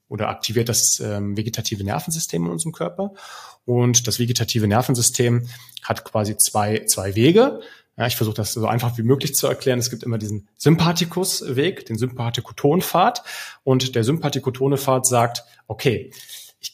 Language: German